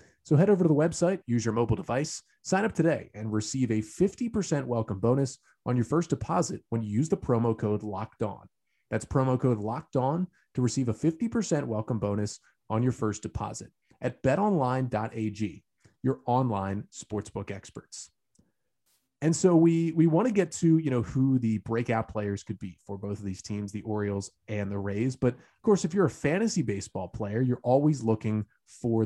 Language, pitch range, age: English, 110-145 Hz, 30-49